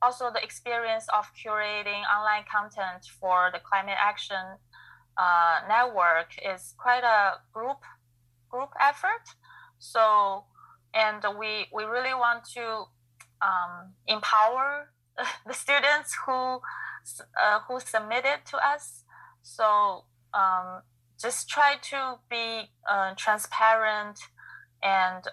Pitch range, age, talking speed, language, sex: 175-220 Hz, 20-39, 105 wpm, English, female